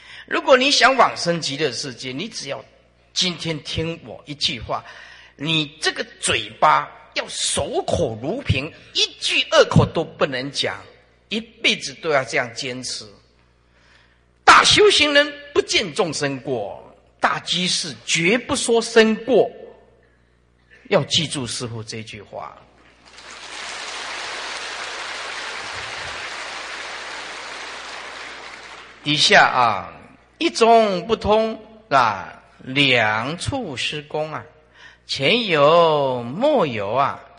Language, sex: Chinese, male